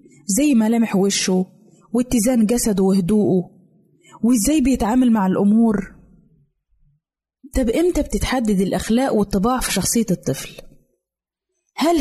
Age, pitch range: 20-39, 200-250 Hz